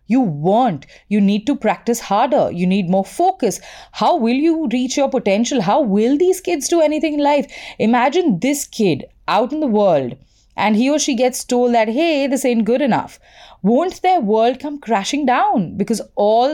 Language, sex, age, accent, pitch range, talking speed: English, female, 30-49, Indian, 190-265 Hz, 190 wpm